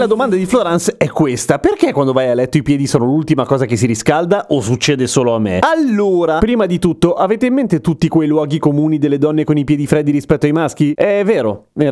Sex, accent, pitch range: male, native, 145-210 Hz